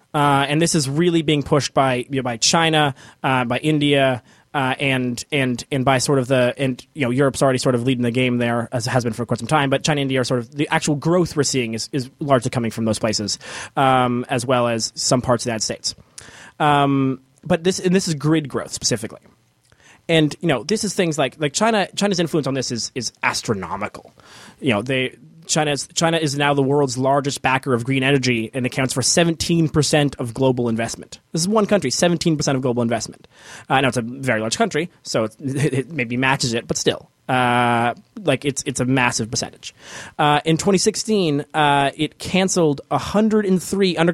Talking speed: 210 wpm